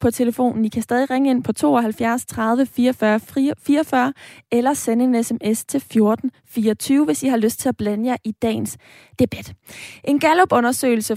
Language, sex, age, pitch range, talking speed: Danish, female, 20-39, 215-260 Hz, 170 wpm